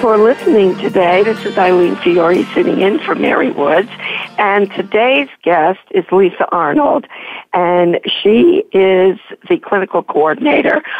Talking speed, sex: 130 wpm, female